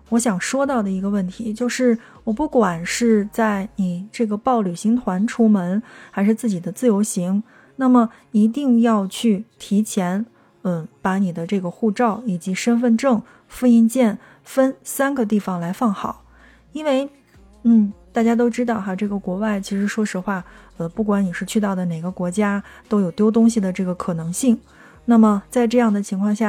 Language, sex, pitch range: Chinese, female, 190-230 Hz